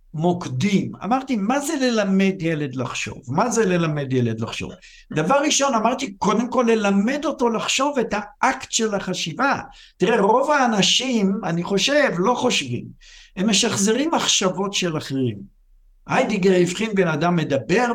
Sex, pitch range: male, 180-240 Hz